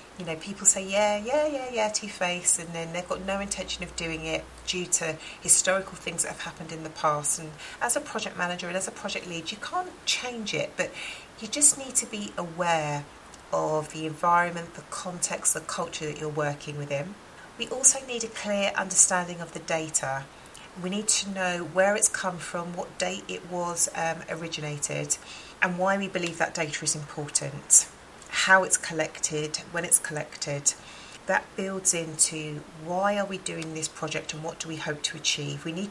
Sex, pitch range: female, 155-195 Hz